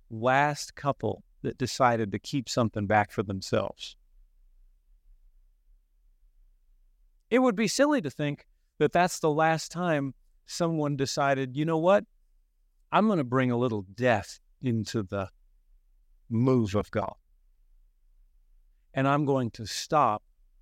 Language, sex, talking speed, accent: English, male, 125 wpm, American